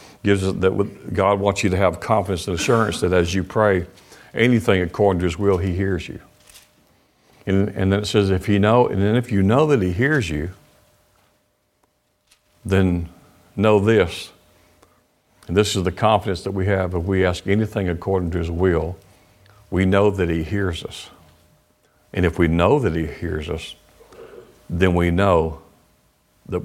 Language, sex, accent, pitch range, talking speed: English, male, American, 85-100 Hz, 180 wpm